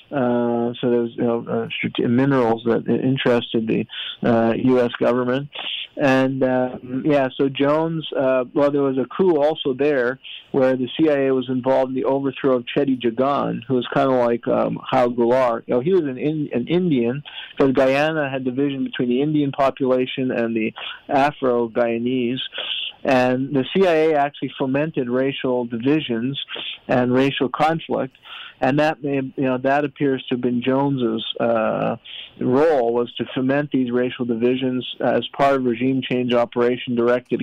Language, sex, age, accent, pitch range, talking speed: English, male, 50-69, American, 120-140 Hz, 160 wpm